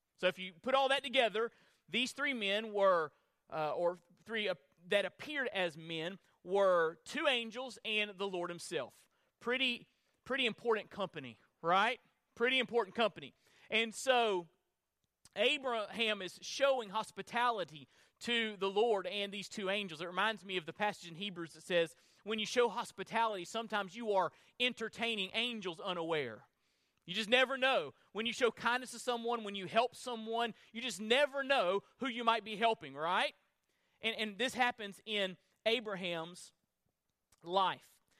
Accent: American